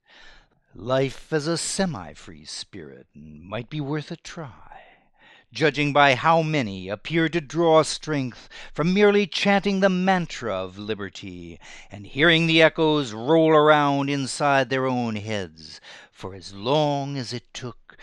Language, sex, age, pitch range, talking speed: English, male, 60-79, 105-160 Hz, 135 wpm